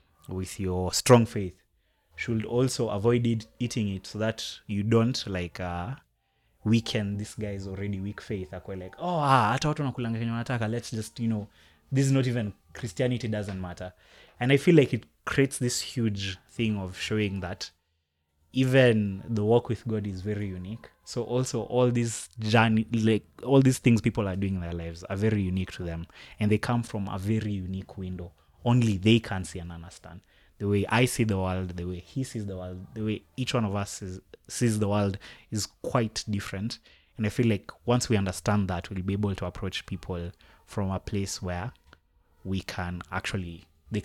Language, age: English, 20-39